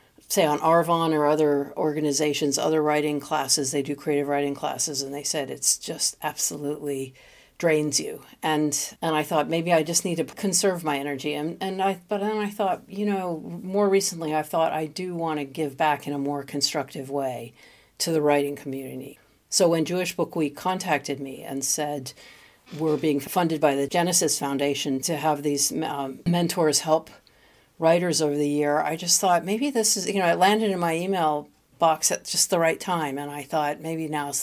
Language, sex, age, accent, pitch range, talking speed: English, female, 50-69, American, 145-175 Hz, 195 wpm